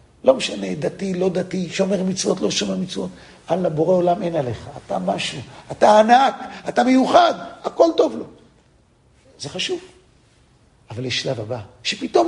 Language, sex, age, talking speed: English, male, 50-69, 85 wpm